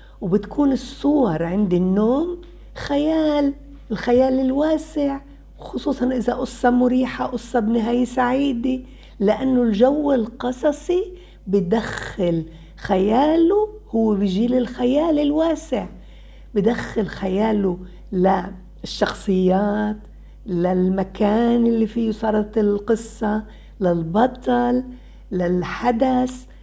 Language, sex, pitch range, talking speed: Arabic, female, 175-250 Hz, 75 wpm